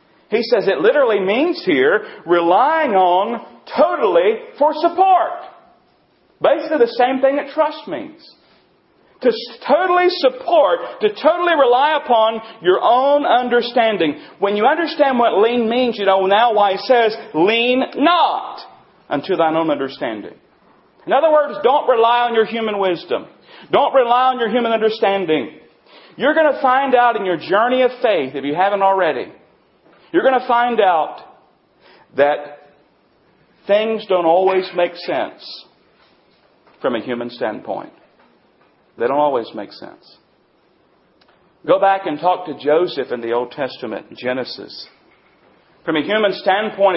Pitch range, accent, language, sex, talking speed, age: 175-295 Hz, American, English, male, 140 wpm, 40-59